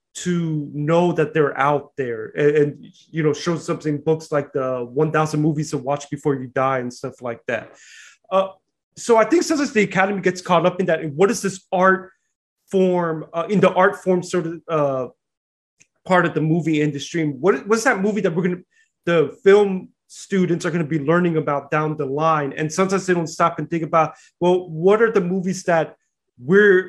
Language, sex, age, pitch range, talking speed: English, male, 20-39, 155-190 Hz, 205 wpm